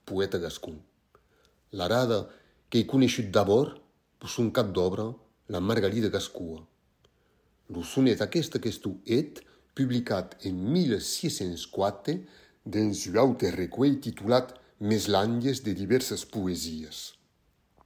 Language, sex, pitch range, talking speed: French, male, 90-125 Hz, 100 wpm